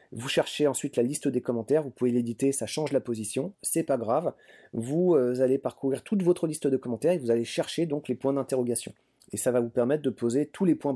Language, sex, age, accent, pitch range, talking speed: French, male, 30-49, French, 120-155 Hz, 235 wpm